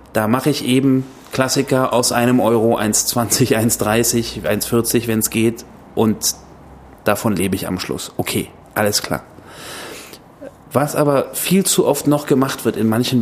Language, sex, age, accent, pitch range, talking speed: German, male, 30-49, German, 110-130 Hz, 150 wpm